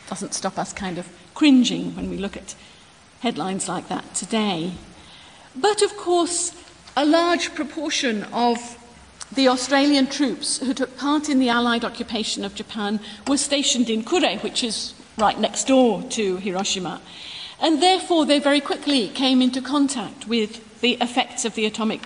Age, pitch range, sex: 50-69, 215-280 Hz, female